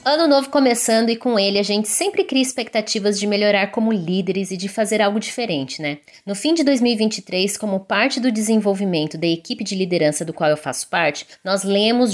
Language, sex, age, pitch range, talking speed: Portuguese, female, 20-39, 200-270 Hz, 200 wpm